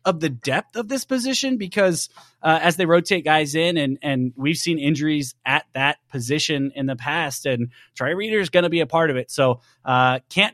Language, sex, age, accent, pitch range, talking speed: English, male, 30-49, American, 125-170 Hz, 215 wpm